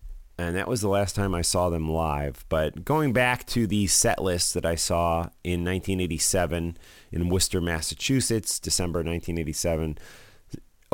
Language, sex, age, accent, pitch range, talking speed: English, male, 40-59, American, 85-115 Hz, 150 wpm